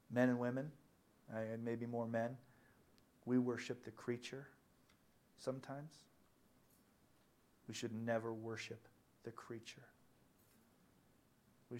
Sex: male